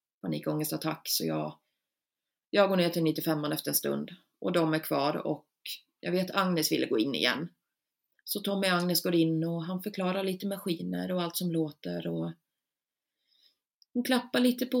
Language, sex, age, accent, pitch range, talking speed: Swedish, female, 30-49, native, 170-210 Hz, 185 wpm